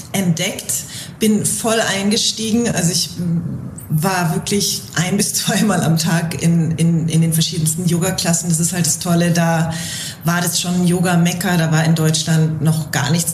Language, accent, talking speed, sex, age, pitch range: German, German, 160 wpm, female, 30-49, 160-195 Hz